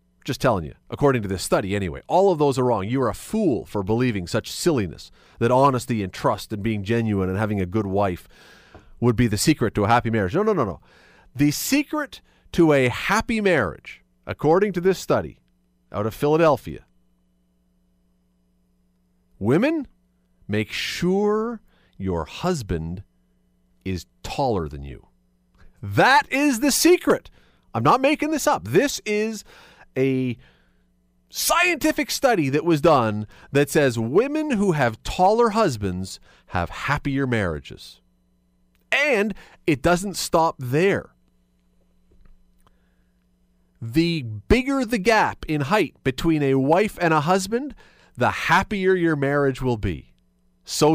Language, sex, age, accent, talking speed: English, male, 40-59, American, 140 wpm